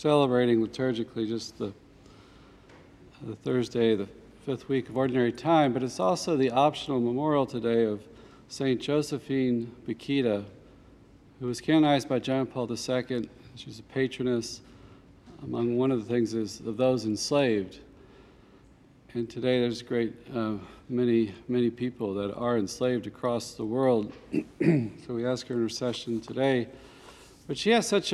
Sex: male